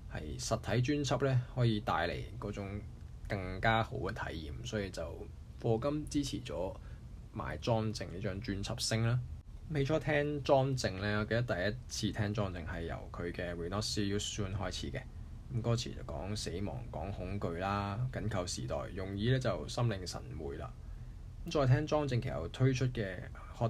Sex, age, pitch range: male, 20-39, 100-120 Hz